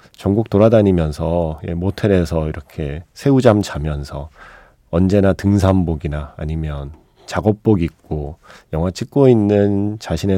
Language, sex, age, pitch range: Korean, male, 40-59, 85-120 Hz